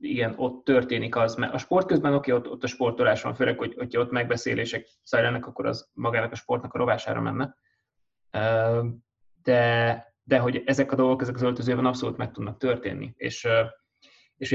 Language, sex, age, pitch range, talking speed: Hungarian, male, 20-39, 115-130 Hz, 175 wpm